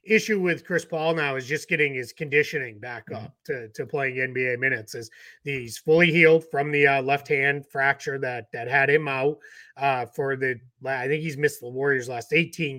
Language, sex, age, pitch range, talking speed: English, male, 30-49, 135-170 Hz, 190 wpm